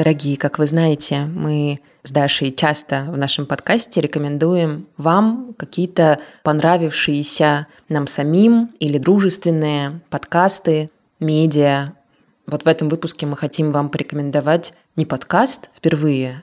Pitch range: 145-170 Hz